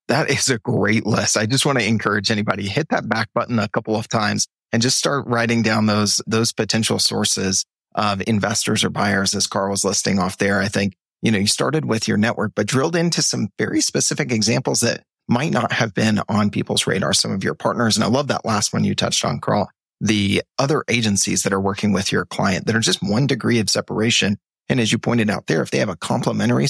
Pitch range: 100-115 Hz